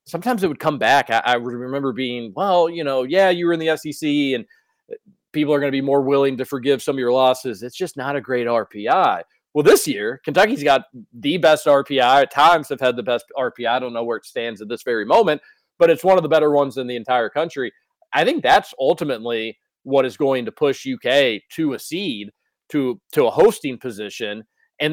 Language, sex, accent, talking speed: English, male, American, 225 wpm